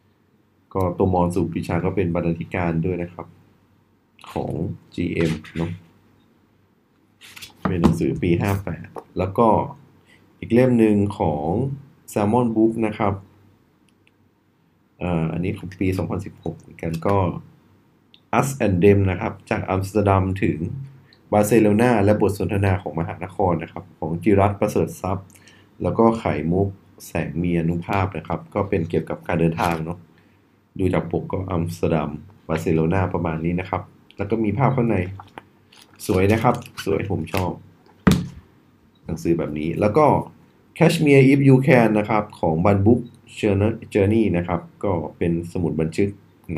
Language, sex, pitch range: Thai, male, 85-110 Hz